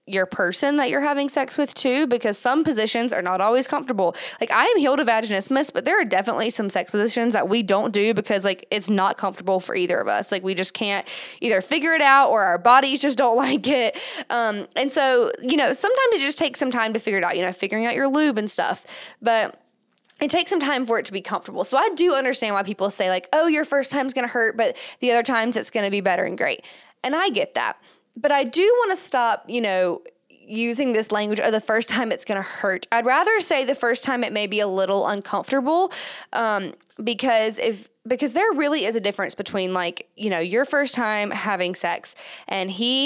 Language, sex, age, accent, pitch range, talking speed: English, female, 20-39, American, 200-275 Hz, 235 wpm